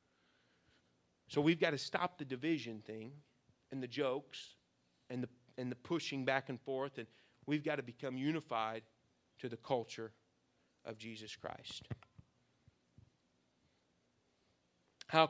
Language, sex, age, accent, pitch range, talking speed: English, male, 40-59, American, 120-150 Hz, 125 wpm